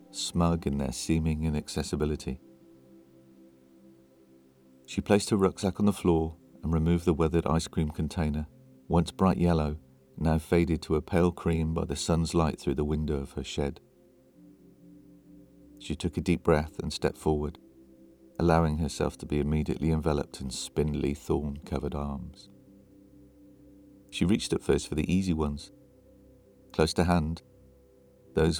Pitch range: 75-90 Hz